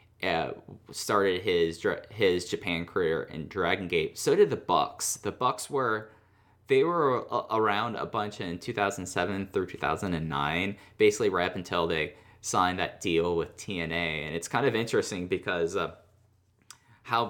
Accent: American